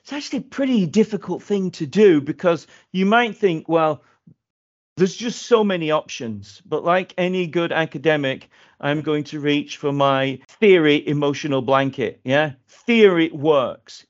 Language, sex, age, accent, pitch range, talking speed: English, male, 40-59, British, 135-190 Hz, 150 wpm